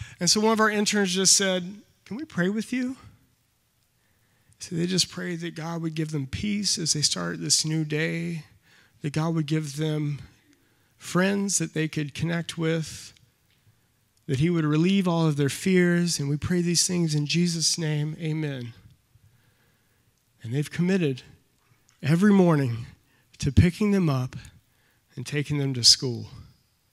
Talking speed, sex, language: 160 wpm, male, English